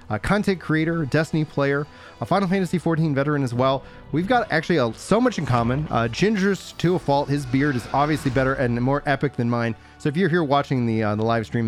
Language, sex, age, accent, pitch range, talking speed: English, male, 30-49, American, 125-165 Hz, 230 wpm